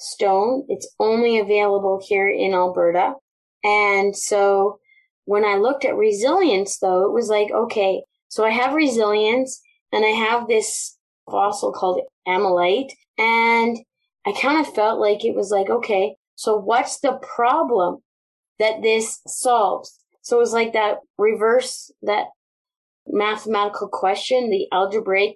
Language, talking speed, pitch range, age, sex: English, 135 wpm, 200-260 Hz, 20-39, female